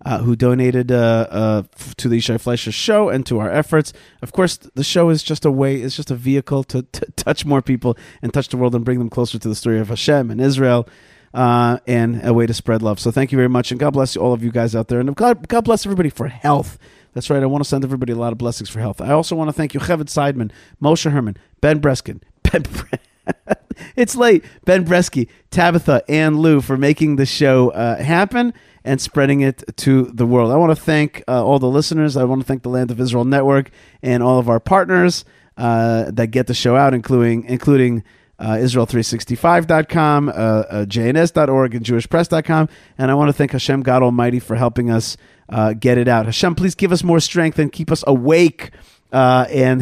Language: English